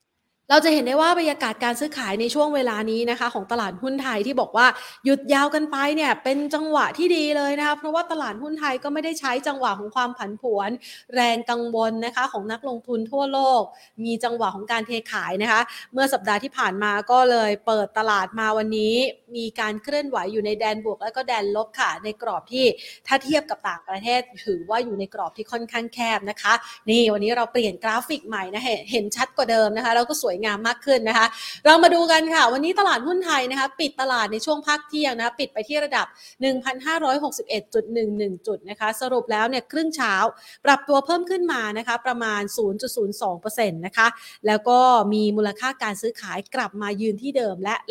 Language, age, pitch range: Thai, 20-39, 215-275 Hz